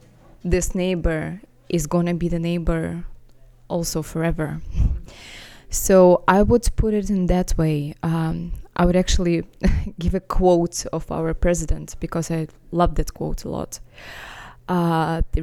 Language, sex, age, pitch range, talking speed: English, female, 20-39, 160-180 Hz, 140 wpm